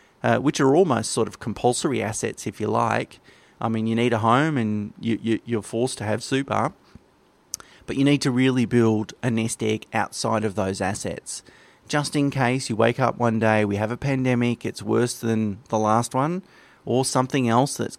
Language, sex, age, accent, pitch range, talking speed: English, male, 30-49, Australian, 110-125 Hz, 195 wpm